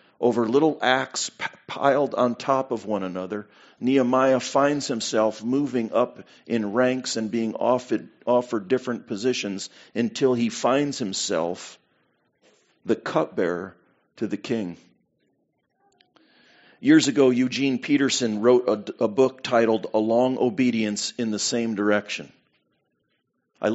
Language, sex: English, male